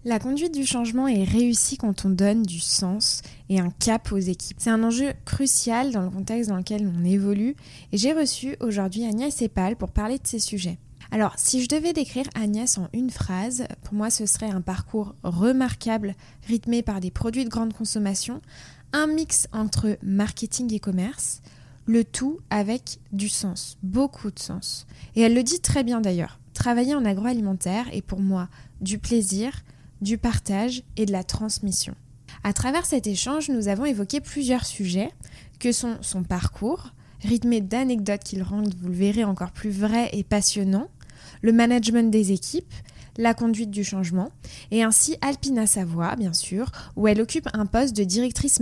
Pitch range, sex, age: 195-240 Hz, female, 20-39